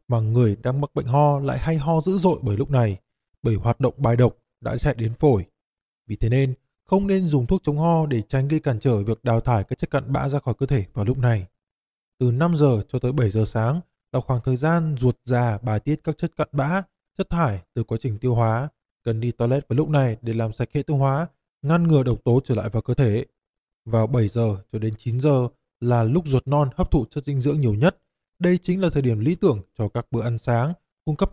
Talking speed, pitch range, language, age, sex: 250 wpm, 115-150 Hz, Vietnamese, 20-39, male